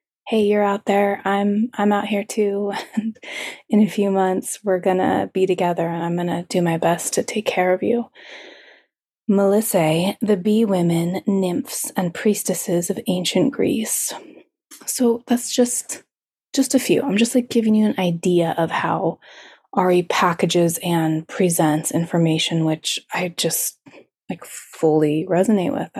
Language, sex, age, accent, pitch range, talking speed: English, female, 20-39, American, 175-215 Hz, 150 wpm